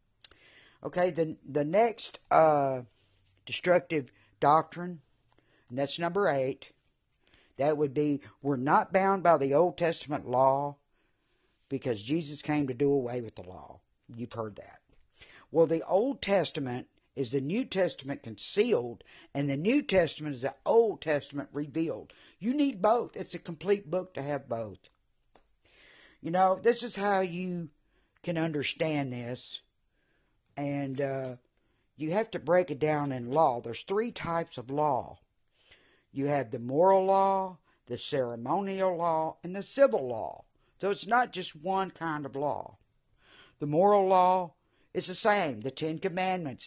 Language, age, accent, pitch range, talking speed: English, 50-69, American, 135-185 Hz, 150 wpm